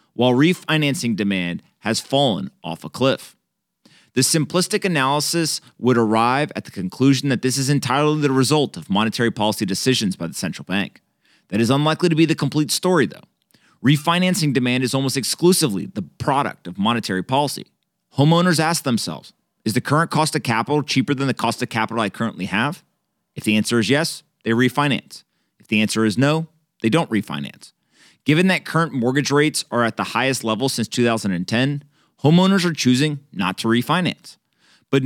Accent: American